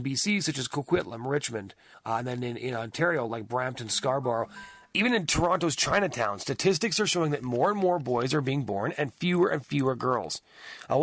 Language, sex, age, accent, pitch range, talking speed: English, male, 30-49, American, 125-170 Hz, 195 wpm